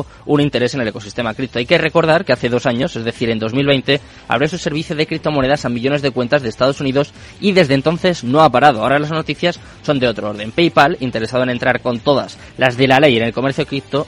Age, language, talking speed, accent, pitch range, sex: 20-39, Spanish, 240 wpm, Spanish, 125-155 Hz, male